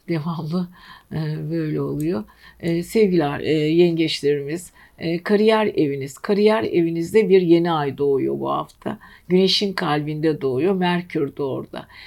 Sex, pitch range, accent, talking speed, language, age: female, 155-205 Hz, native, 100 wpm, Turkish, 60-79